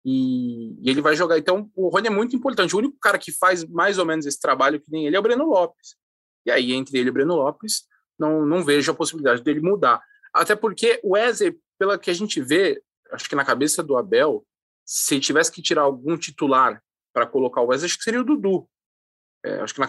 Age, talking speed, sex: 20-39, 230 wpm, male